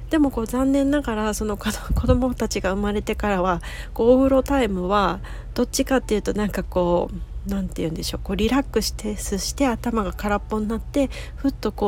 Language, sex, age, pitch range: Japanese, female, 40-59, 180-225 Hz